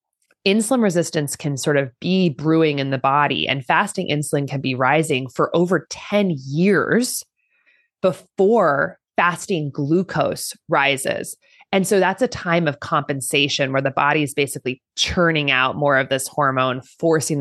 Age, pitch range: 20-39, 140-175 Hz